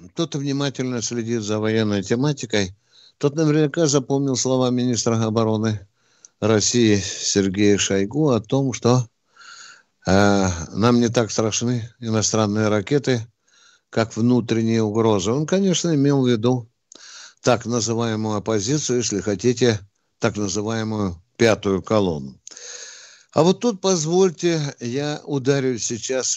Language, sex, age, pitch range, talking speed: Russian, male, 60-79, 110-155 Hz, 110 wpm